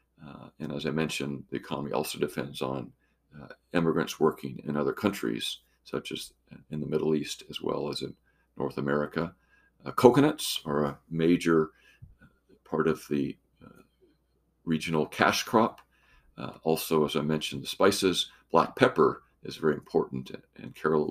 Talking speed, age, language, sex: 155 wpm, 50-69, English, male